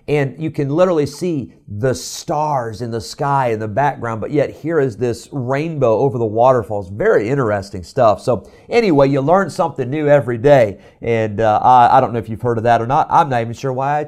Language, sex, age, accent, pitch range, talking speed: English, male, 40-59, American, 115-155 Hz, 220 wpm